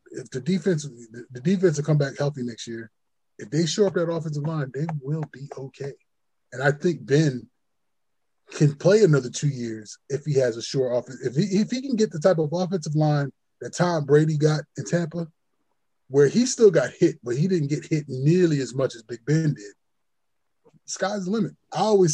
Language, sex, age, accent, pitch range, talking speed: English, male, 20-39, American, 135-175 Hz, 205 wpm